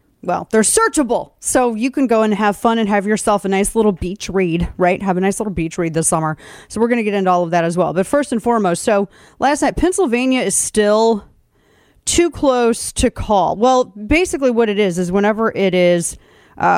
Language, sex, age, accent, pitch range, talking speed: English, female, 30-49, American, 180-230 Hz, 220 wpm